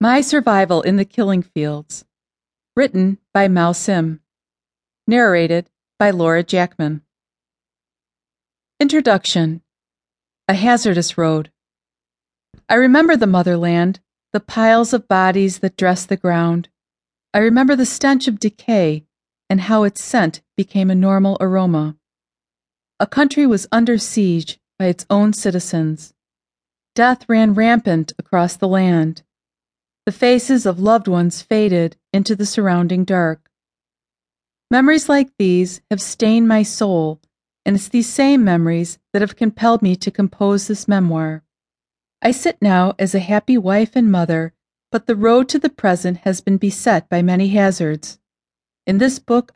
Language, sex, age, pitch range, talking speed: English, female, 40-59, 175-230 Hz, 135 wpm